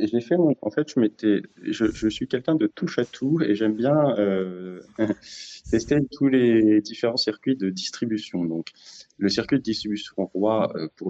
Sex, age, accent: male, 30-49, French